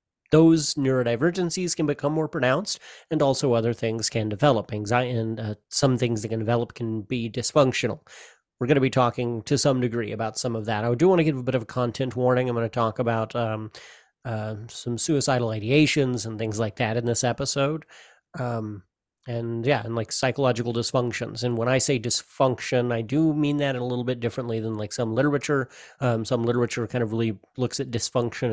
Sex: male